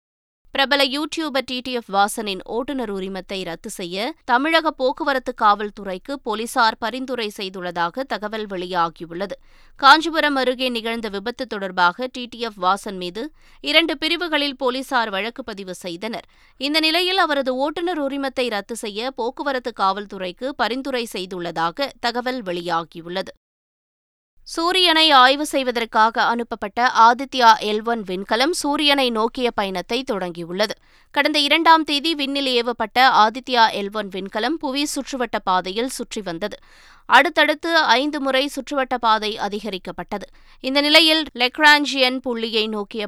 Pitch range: 205-275 Hz